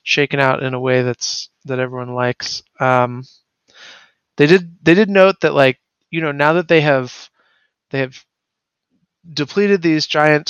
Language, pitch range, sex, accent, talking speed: English, 125-140 Hz, male, American, 160 wpm